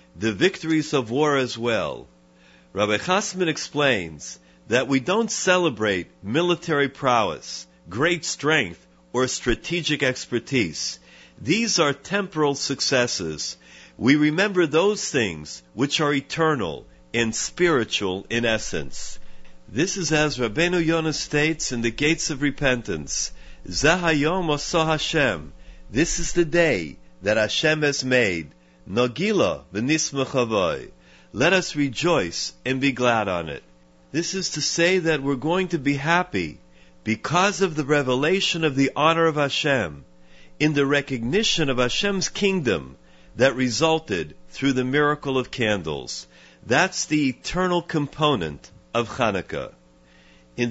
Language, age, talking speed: English, 50-69, 125 wpm